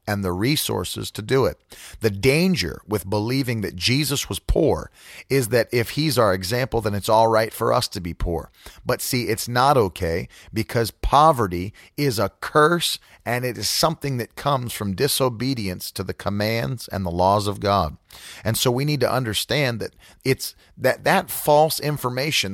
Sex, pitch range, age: male, 95-125 Hz, 40-59